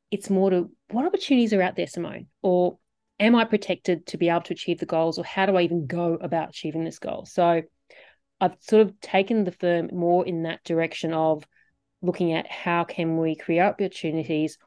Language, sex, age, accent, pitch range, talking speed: English, female, 30-49, Australian, 165-195 Hz, 200 wpm